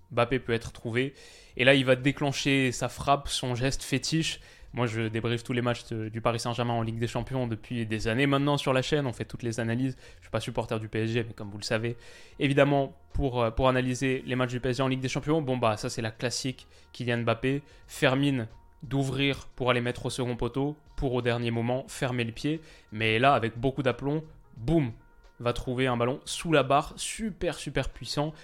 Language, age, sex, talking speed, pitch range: French, 20-39, male, 215 wpm, 115-140 Hz